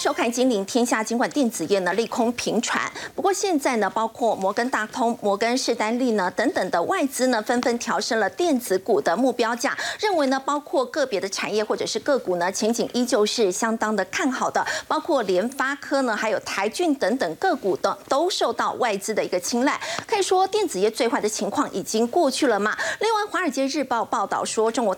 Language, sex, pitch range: Chinese, female, 215-295 Hz